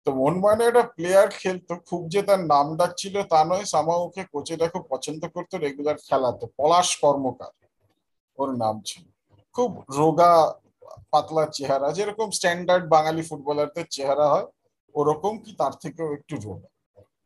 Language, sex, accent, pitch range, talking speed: Bengali, male, native, 150-200 Hz, 55 wpm